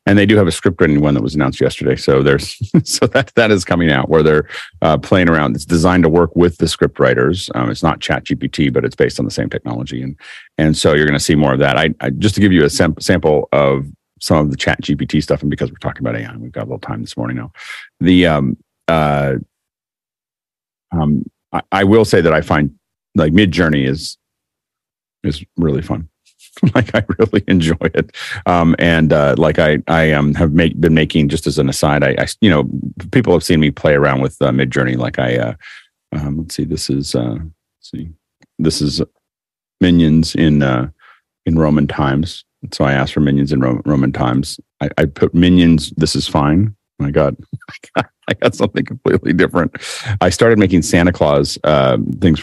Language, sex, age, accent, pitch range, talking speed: English, male, 40-59, American, 70-85 Hz, 210 wpm